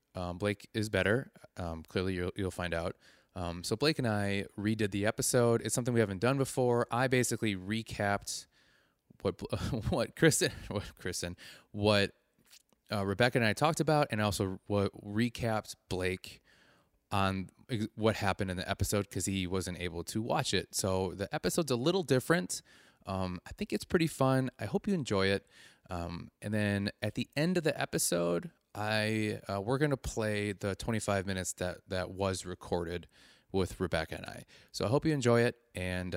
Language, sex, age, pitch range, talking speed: English, male, 20-39, 90-115 Hz, 175 wpm